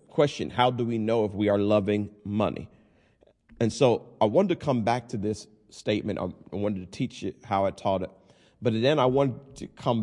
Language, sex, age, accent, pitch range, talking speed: English, male, 40-59, American, 100-125 Hz, 210 wpm